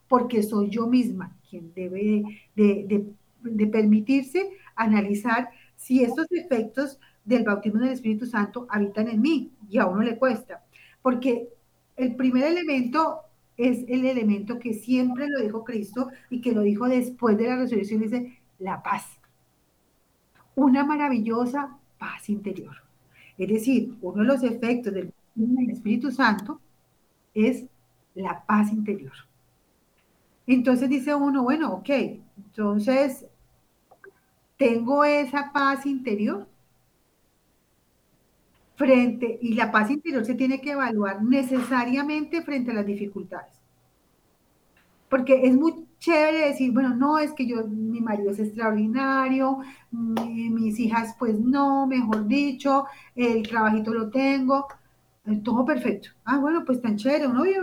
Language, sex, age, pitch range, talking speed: Spanish, female, 40-59, 215-270 Hz, 130 wpm